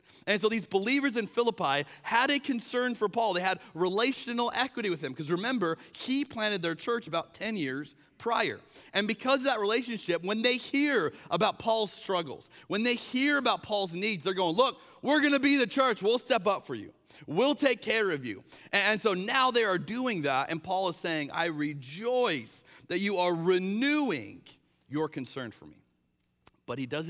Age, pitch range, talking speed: 30-49, 140-220 Hz, 195 wpm